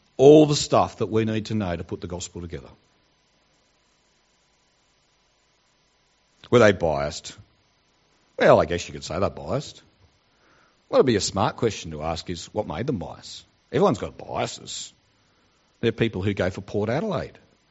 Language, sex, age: English, male, 50-69